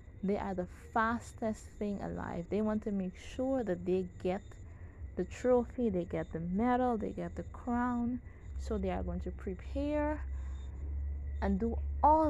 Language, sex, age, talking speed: English, female, 20-39, 160 wpm